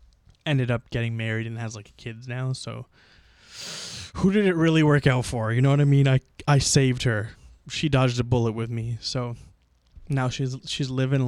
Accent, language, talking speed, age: American, English, 195 wpm, 20-39